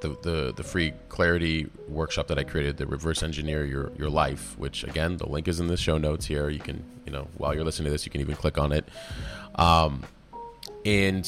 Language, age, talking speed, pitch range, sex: English, 30-49, 225 wpm, 80-100 Hz, male